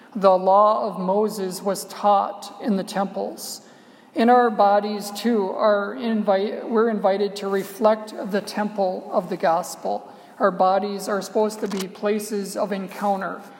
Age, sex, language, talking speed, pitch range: 50-69, male, English, 145 wpm, 195-220 Hz